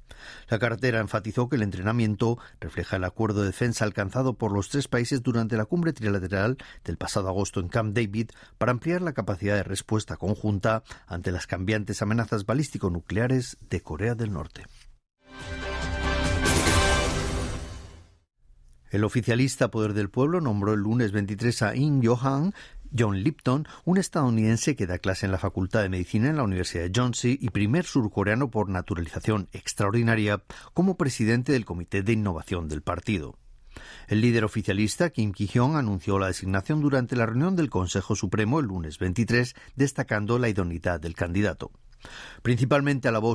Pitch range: 95-125 Hz